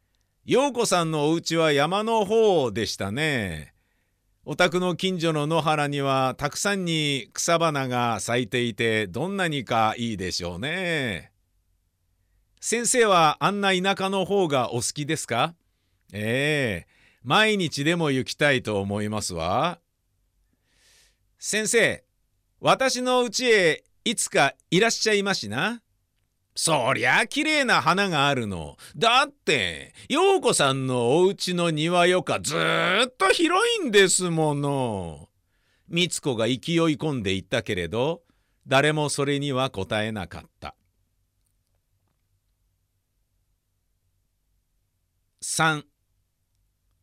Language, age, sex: Japanese, 50-69, male